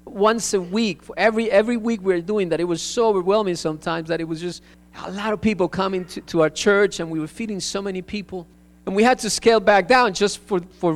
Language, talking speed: English, 250 wpm